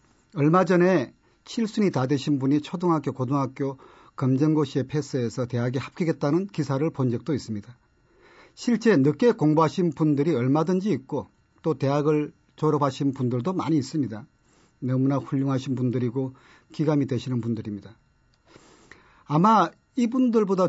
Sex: male